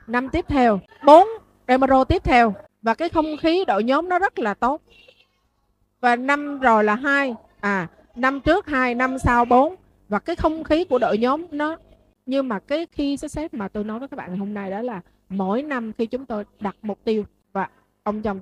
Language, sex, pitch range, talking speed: Vietnamese, female, 200-260 Hz, 210 wpm